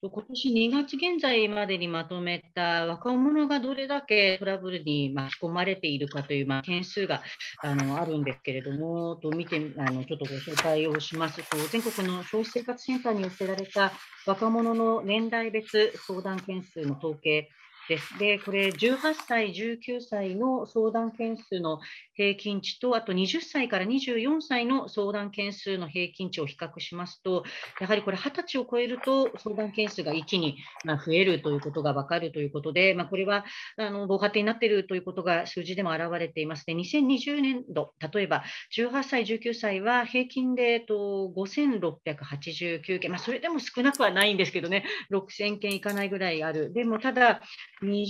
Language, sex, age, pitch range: Japanese, female, 40-59, 170-235 Hz